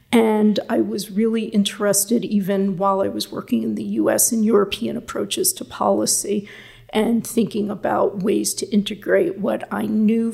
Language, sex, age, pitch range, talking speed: English, female, 40-59, 195-225 Hz, 155 wpm